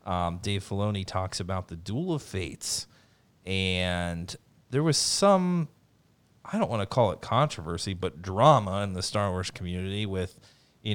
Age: 30-49